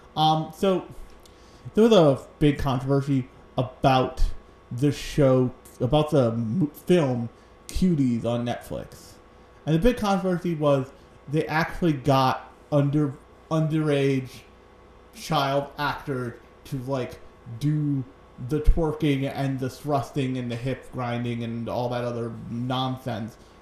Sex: male